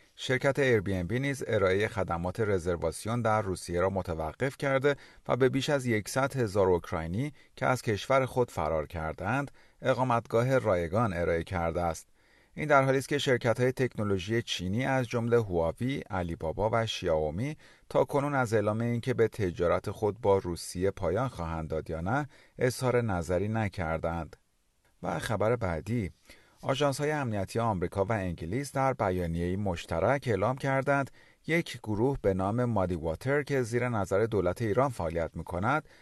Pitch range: 90-130 Hz